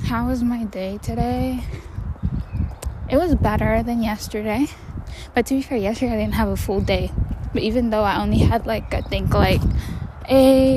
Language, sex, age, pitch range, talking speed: English, female, 10-29, 190-255 Hz, 180 wpm